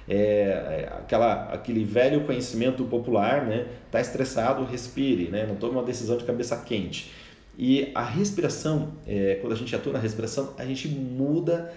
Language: Portuguese